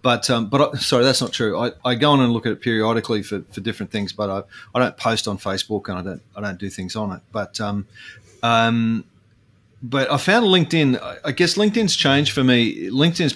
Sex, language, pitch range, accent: male, English, 105-125 Hz, Australian